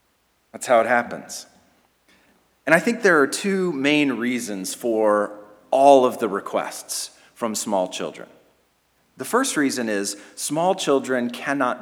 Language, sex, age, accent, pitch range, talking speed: English, male, 40-59, American, 115-175 Hz, 135 wpm